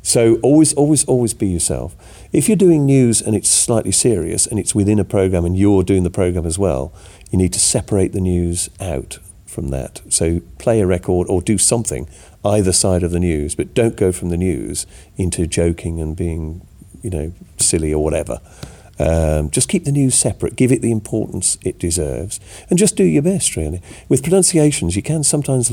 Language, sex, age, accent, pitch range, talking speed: English, male, 40-59, British, 85-115 Hz, 200 wpm